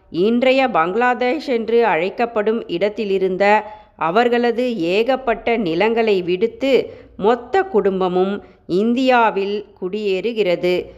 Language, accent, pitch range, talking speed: Tamil, native, 190-245 Hz, 70 wpm